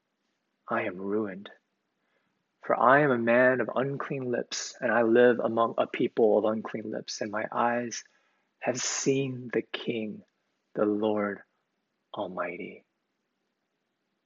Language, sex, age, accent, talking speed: English, male, 30-49, American, 125 wpm